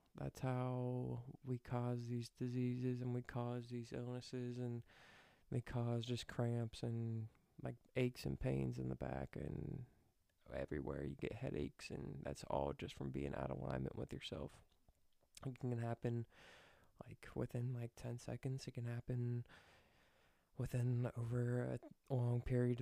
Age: 20-39